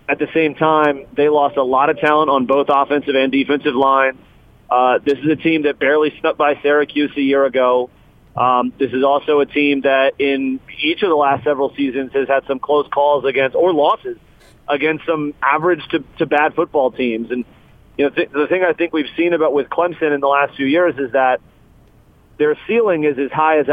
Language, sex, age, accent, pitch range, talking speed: English, male, 40-59, American, 135-165 Hz, 215 wpm